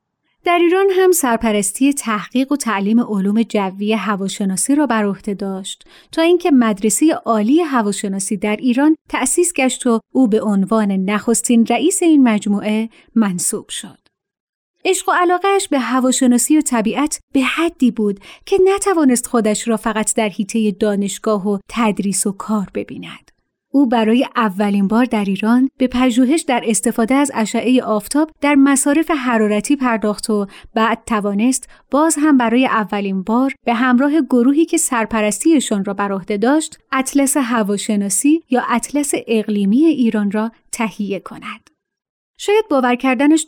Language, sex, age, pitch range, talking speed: Persian, female, 30-49, 215-280 Hz, 140 wpm